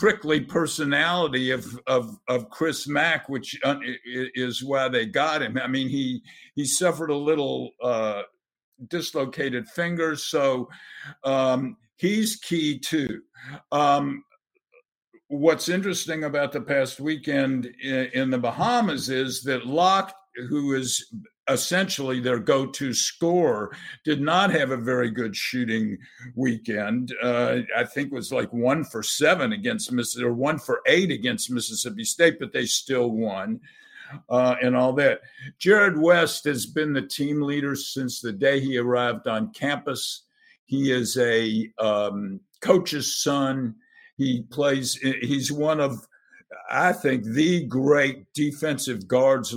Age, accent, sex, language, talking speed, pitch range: 60-79, American, male, English, 140 wpm, 125-165 Hz